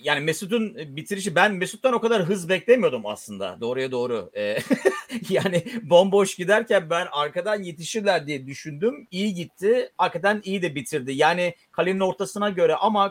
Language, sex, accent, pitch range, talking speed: Turkish, male, native, 130-185 Hz, 140 wpm